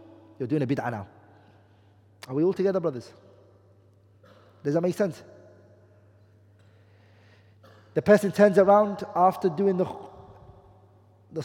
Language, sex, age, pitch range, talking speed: English, male, 30-49, 105-175 Hz, 115 wpm